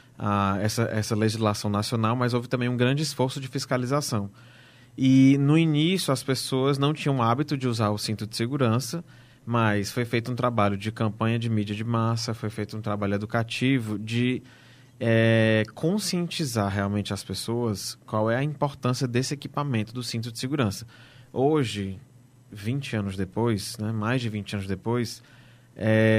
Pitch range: 110-135 Hz